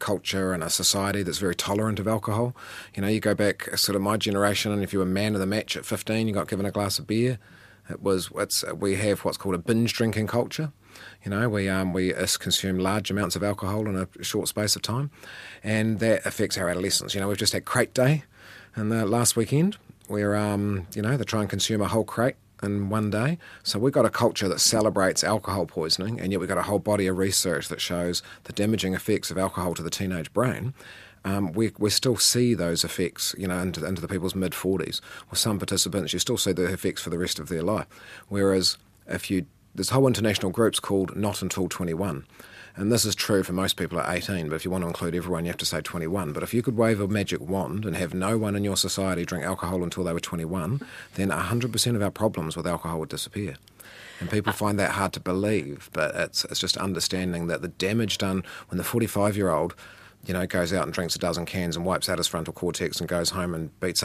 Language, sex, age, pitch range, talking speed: English, male, 30-49, 90-105 Hz, 240 wpm